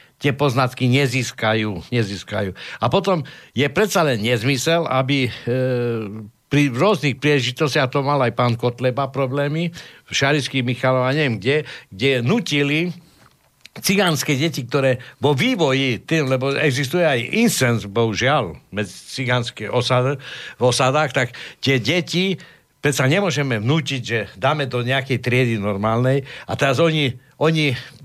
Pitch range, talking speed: 120-145 Hz, 125 wpm